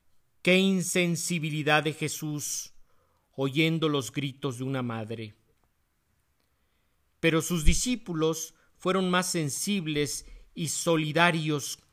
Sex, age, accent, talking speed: male, 50-69, Mexican, 90 wpm